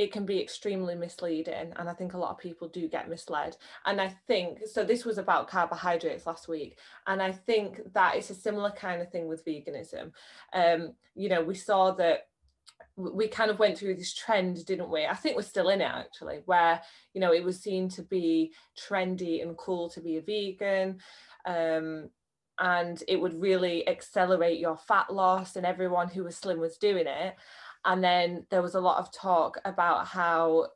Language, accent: English, British